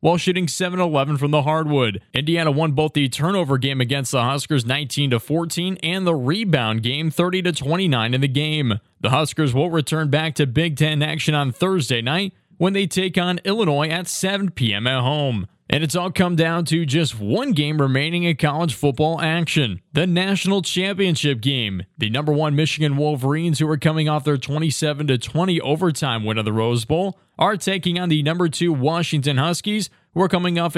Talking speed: 180 wpm